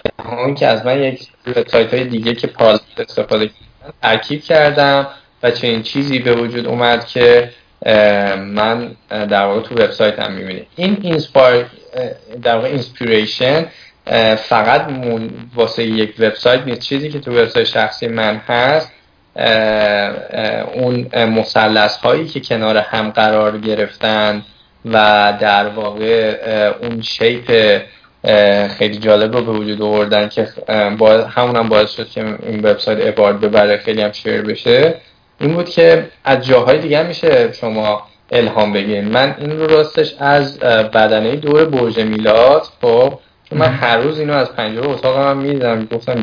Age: 10-29